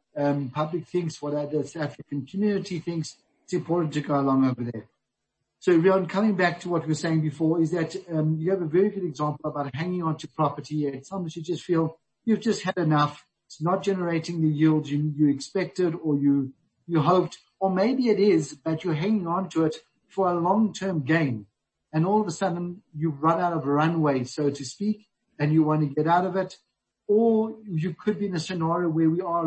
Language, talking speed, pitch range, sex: English, 220 wpm, 150-185 Hz, male